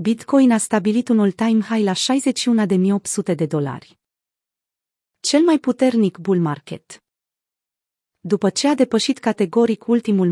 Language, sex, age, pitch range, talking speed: Romanian, female, 30-49, 185-240 Hz, 120 wpm